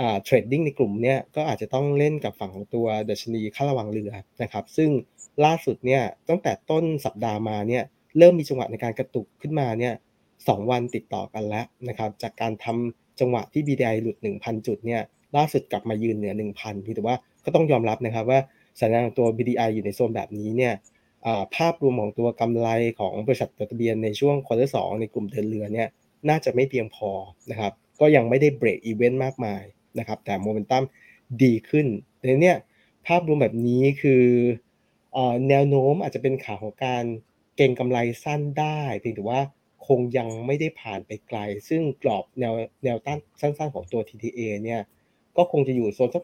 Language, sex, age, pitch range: Thai, male, 20-39, 110-140 Hz